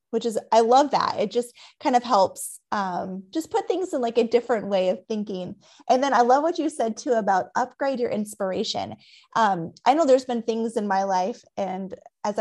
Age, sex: 20-39, female